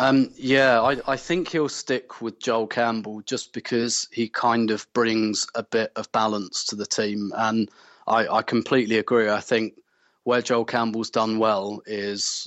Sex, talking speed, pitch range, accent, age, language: male, 175 wpm, 105-120 Hz, British, 20-39, English